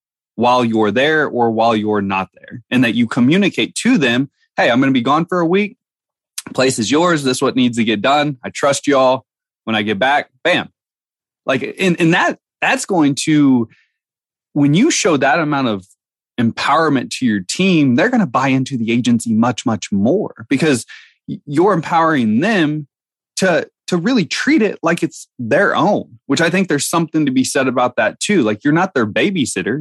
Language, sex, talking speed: English, male, 195 wpm